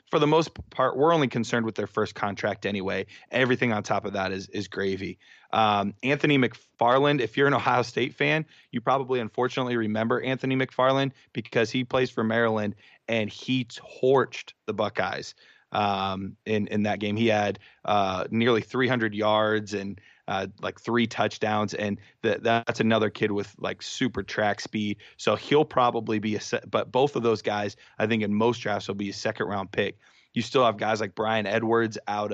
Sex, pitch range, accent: male, 105-125 Hz, American